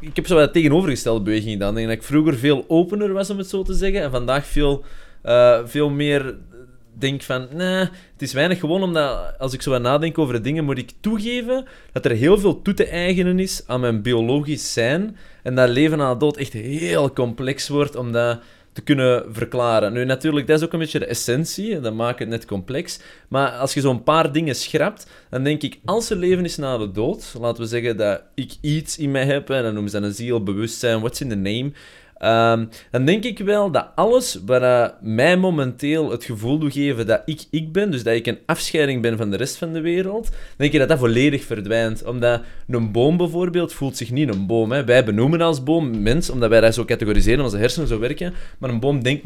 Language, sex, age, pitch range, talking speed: Dutch, male, 20-39, 120-160 Hz, 230 wpm